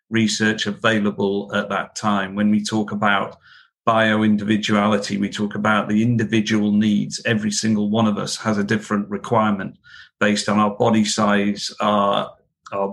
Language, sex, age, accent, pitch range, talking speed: English, male, 50-69, British, 105-115 Hz, 150 wpm